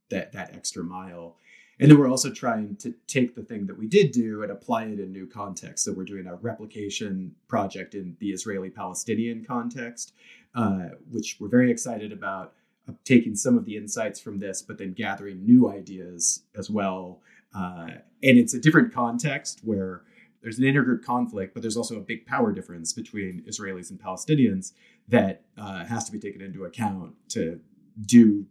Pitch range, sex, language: 95-120 Hz, male, English